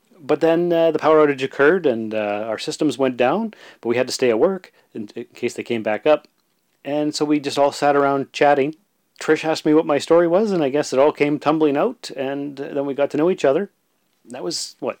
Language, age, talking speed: English, 40-59, 245 wpm